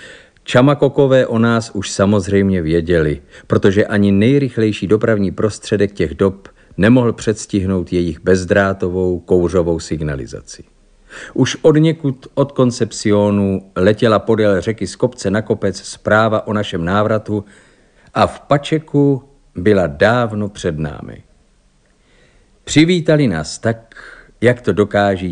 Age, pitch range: 50-69, 90-120 Hz